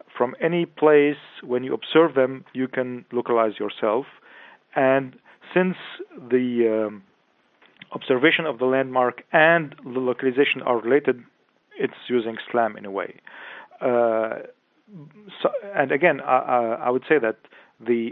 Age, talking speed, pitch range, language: 40-59, 130 wpm, 120-145 Hz, English